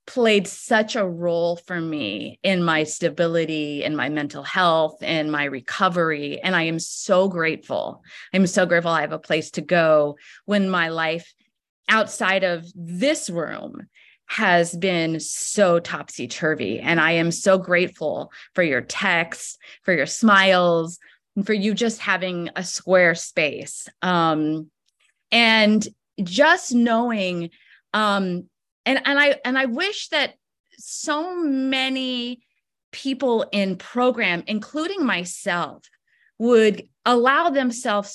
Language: English